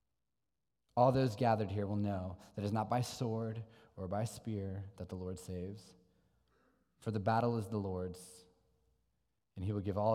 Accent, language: American, English